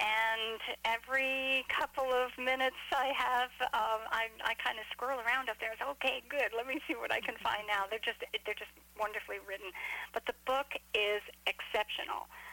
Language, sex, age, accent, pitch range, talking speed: English, female, 50-69, American, 220-280 Hz, 185 wpm